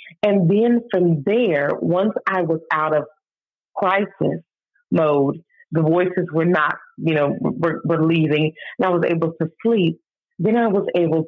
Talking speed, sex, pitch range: 160 wpm, female, 160-195 Hz